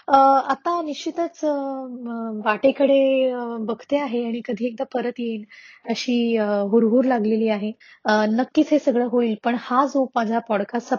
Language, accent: Marathi, native